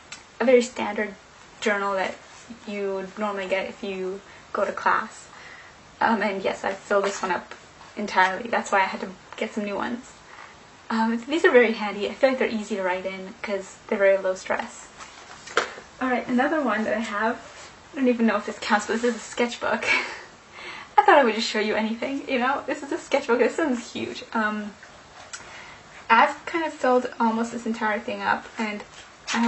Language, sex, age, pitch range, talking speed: English, female, 10-29, 205-245 Hz, 195 wpm